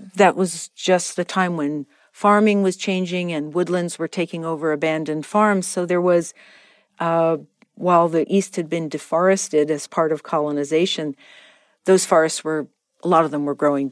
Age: 50-69